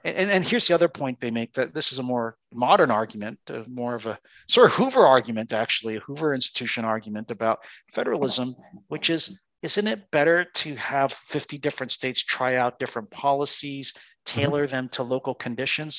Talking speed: 180 wpm